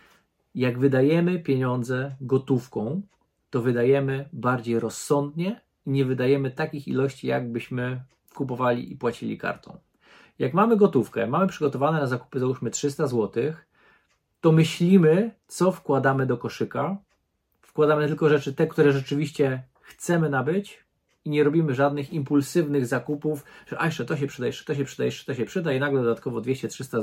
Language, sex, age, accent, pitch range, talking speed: Polish, male, 40-59, native, 125-150 Hz, 140 wpm